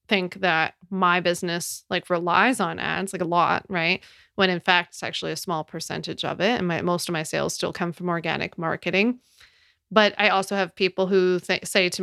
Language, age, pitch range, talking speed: English, 20-39, 175-210 Hz, 210 wpm